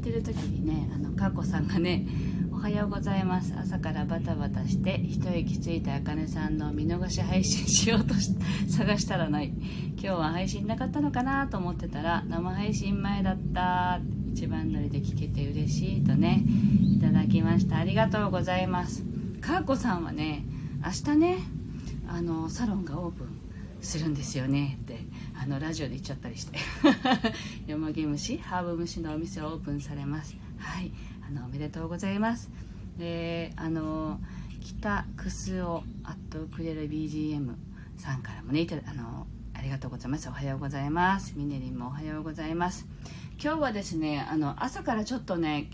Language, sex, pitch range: Japanese, female, 145-190 Hz